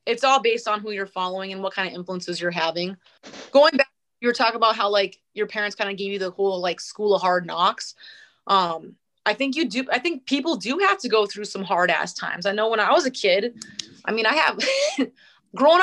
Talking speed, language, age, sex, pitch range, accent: 245 wpm, English, 20-39, female, 195-265 Hz, American